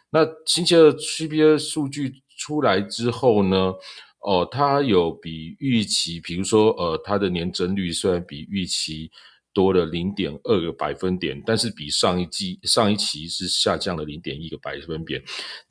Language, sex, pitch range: Chinese, male, 90-120 Hz